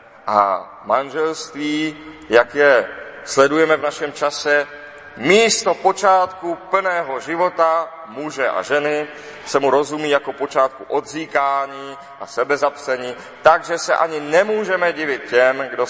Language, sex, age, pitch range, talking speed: Czech, male, 40-59, 130-155 Hz, 115 wpm